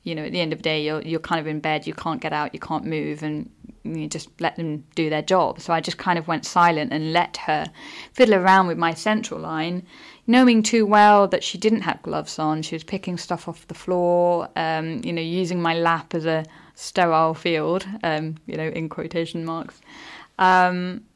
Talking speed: 220 wpm